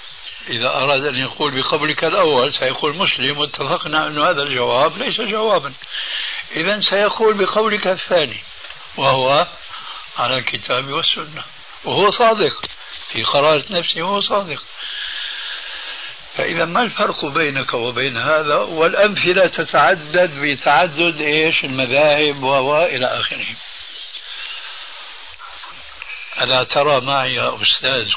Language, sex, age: Arabic, male, 60-79